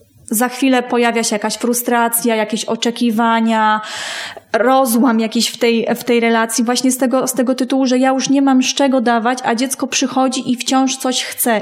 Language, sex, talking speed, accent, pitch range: Polish, female, 175 wpm, native, 225-260 Hz